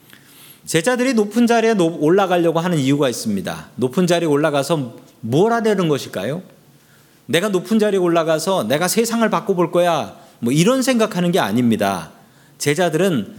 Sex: male